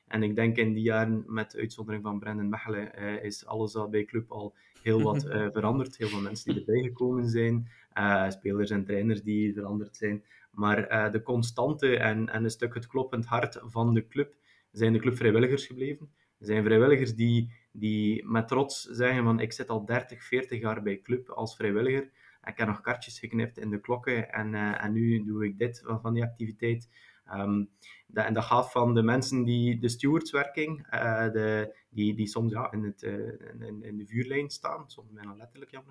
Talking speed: 200 wpm